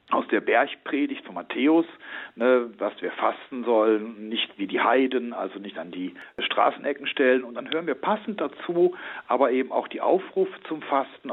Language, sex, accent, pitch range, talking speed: German, male, German, 115-180 Hz, 175 wpm